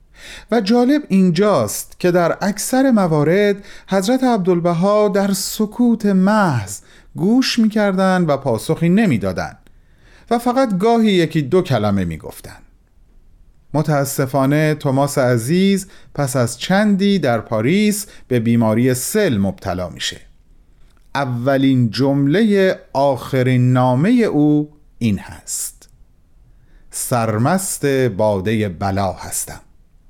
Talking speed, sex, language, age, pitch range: 95 wpm, male, Persian, 40-59, 115-195 Hz